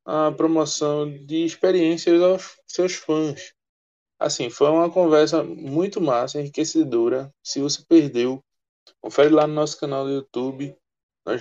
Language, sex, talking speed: Portuguese, male, 130 wpm